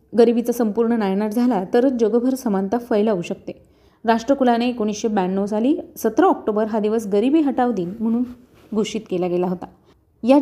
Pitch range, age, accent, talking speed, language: 205-250 Hz, 30-49, native, 150 wpm, Marathi